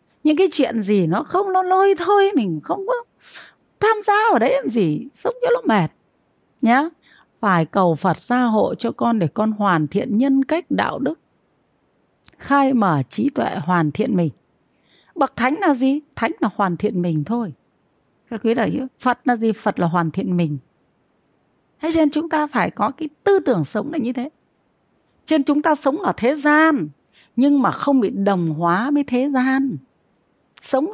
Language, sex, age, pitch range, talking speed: Vietnamese, female, 30-49, 205-295 Hz, 185 wpm